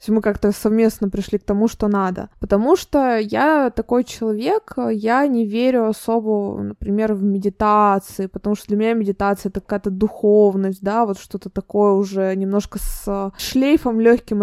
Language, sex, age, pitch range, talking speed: Russian, female, 20-39, 200-245 Hz, 160 wpm